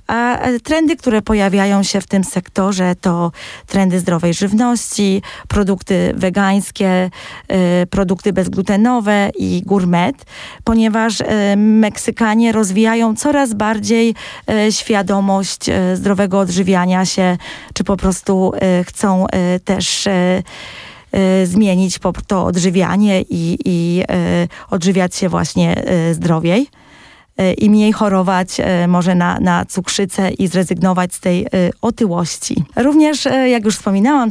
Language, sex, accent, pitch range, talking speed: Polish, female, native, 180-210 Hz, 100 wpm